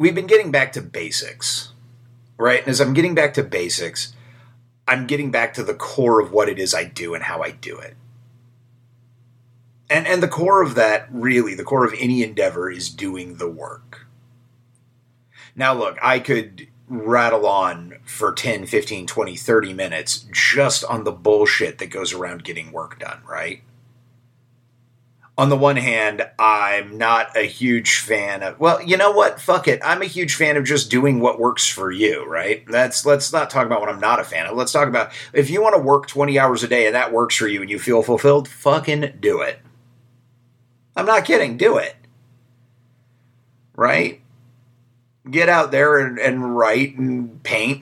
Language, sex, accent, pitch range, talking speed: English, male, American, 120-140 Hz, 185 wpm